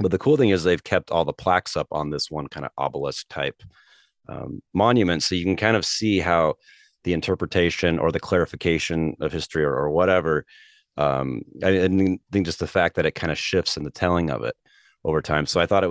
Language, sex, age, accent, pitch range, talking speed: English, male, 30-49, American, 75-95 Hz, 225 wpm